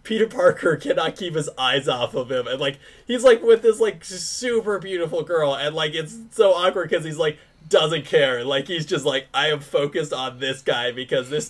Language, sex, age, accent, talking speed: English, male, 20-39, American, 215 wpm